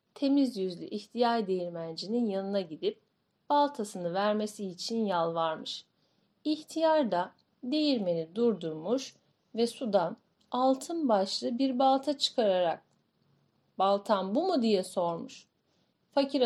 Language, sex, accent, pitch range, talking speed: Turkish, female, native, 195-290 Hz, 100 wpm